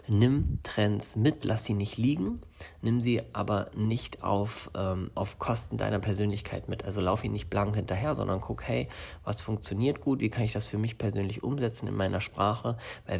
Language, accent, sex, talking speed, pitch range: German, German, male, 185 wpm, 100-110 Hz